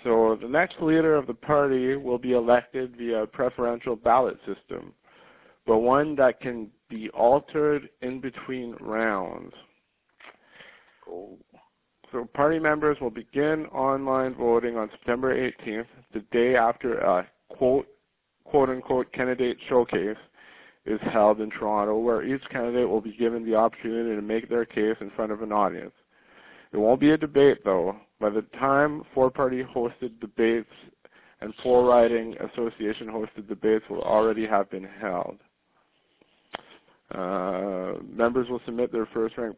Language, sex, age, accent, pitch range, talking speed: English, male, 50-69, American, 105-130 Hz, 140 wpm